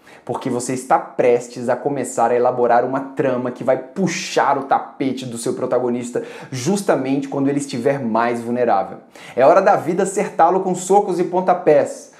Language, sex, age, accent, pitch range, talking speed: Portuguese, male, 20-39, Brazilian, 130-185 Hz, 160 wpm